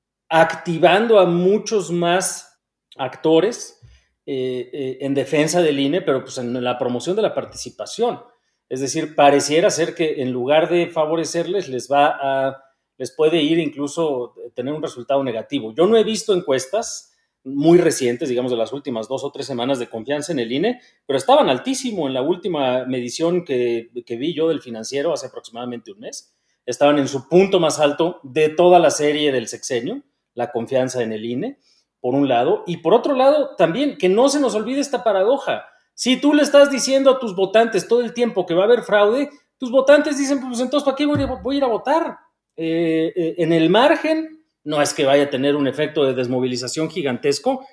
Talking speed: 195 wpm